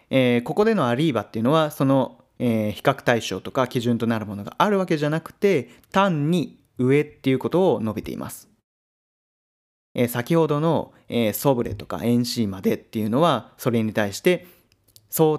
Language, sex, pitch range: Japanese, male, 115-165 Hz